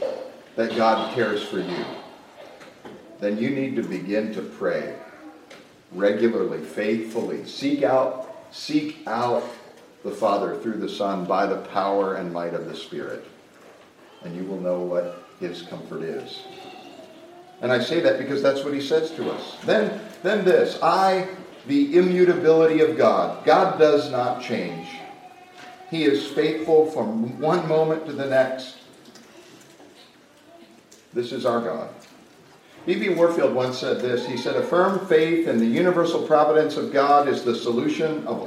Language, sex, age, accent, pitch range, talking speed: English, male, 50-69, American, 115-175 Hz, 145 wpm